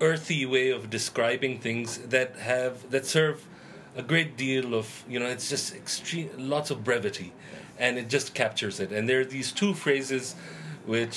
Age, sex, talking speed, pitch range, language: 40-59, male, 175 wpm, 110-135 Hz, English